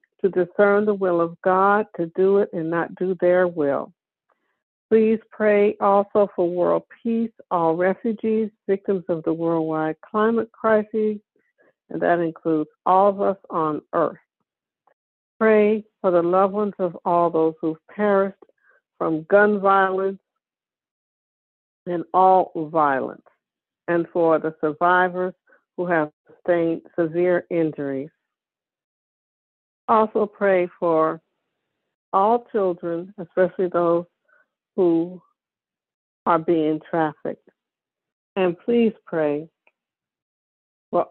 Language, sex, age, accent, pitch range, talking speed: English, female, 60-79, American, 165-205 Hz, 110 wpm